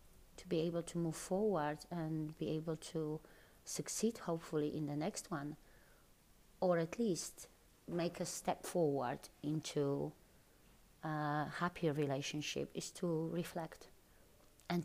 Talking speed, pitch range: 120 wpm, 150-170 Hz